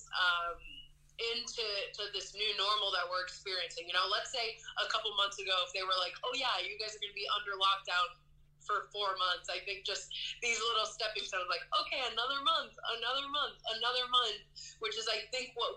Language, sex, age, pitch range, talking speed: English, female, 20-39, 185-240 Hz, 200 wpm